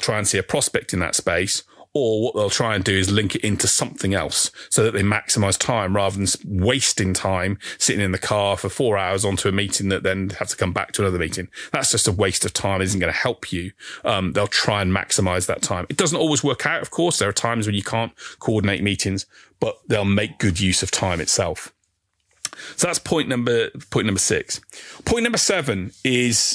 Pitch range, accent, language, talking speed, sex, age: 100-130 Hz, British, English, 225 wpm, male, 30-49